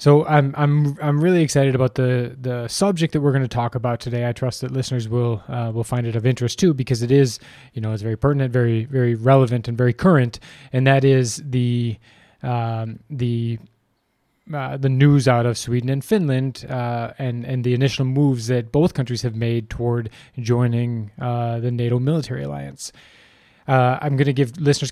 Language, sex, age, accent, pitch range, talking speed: English, male, 20-39, American, 120-135 Hz, 195 wpm